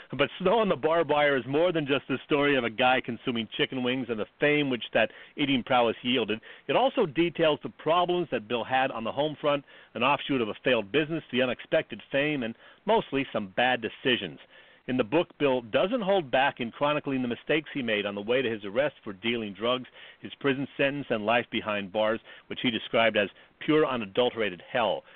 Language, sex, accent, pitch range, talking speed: English, male, American, 115-150 Hz, 210 wpm